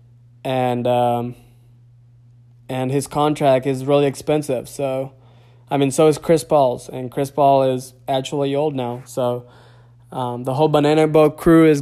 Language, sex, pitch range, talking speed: English, male, 120-140 Hz, 150 wpm